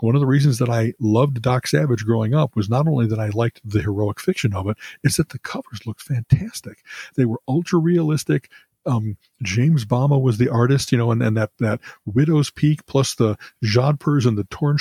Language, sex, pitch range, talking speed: English, male, 110-145 Hz, 205 wpm